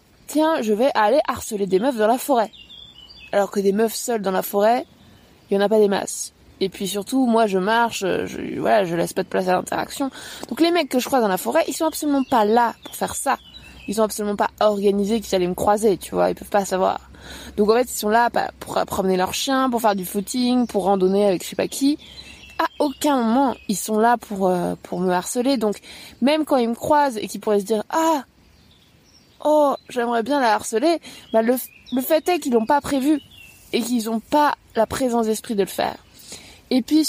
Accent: French